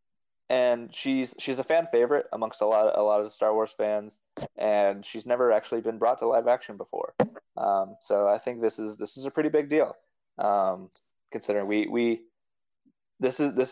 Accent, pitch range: American, 100-155 Hz